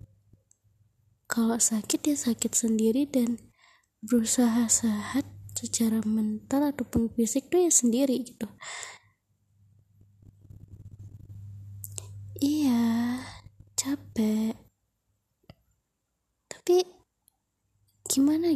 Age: 20-39